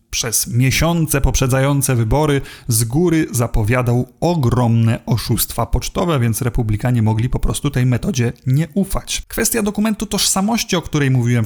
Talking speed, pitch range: 130 wpm, 120-155 Hz